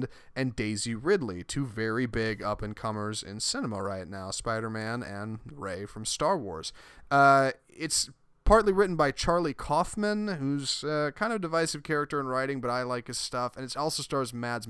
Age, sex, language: 30-49, male, English